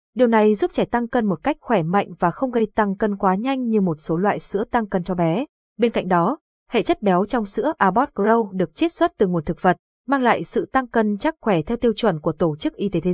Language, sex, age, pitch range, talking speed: Vietnamese, female, 20-39, 185-240 Hz, 270 wpm